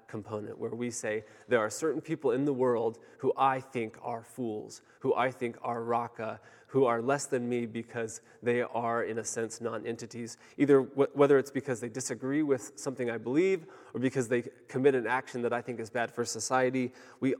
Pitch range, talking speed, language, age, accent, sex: 120-140 Hz, 195 wpm, English, 20-39, American, male